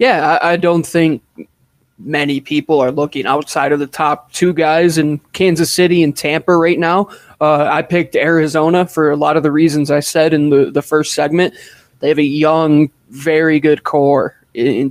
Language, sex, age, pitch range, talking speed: English, male, 20-39, 145-170 Hz, 195 wpm